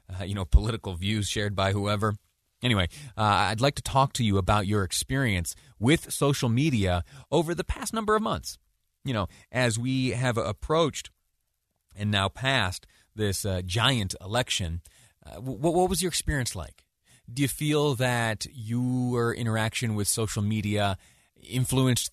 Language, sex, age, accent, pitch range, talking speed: English, male, 30-49, American, 95-130 Hz, 155 wpm